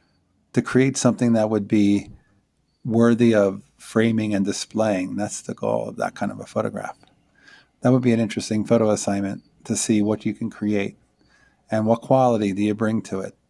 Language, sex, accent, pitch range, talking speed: English, male, American, 100-115 Hz, 180 wpm